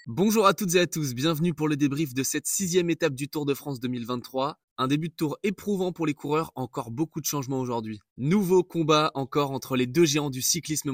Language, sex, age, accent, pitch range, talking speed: French, male, 20-39, French, 125-165 Hz, 225 wpm